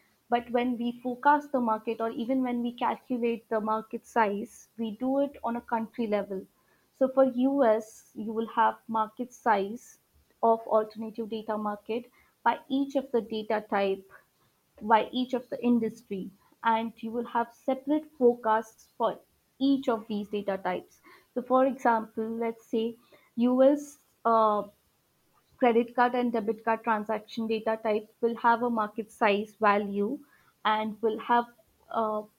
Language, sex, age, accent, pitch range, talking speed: English, female, 30-49, Indian, 215-245 Hz, 150 wpm